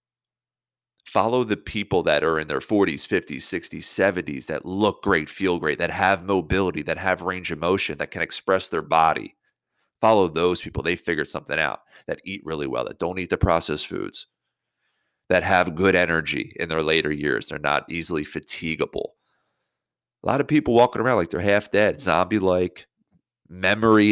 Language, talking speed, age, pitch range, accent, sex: English, 175 wpm, 30-49, 85-110 Hz, American, male